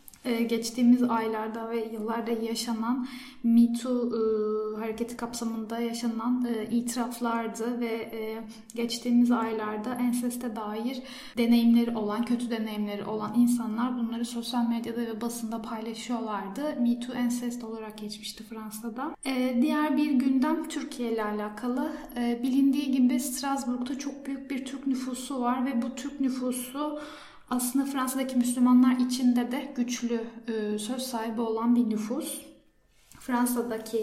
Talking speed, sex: 120 wpm, female